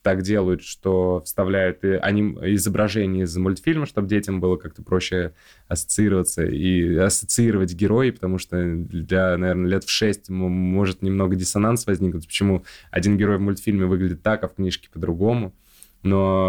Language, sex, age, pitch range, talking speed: Russian, male, 20-39, 90-105 Hz, 150 wpm